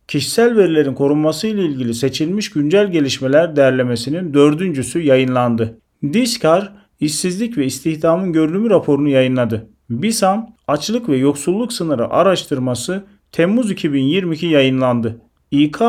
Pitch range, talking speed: 135-185 Hz, 100 wpm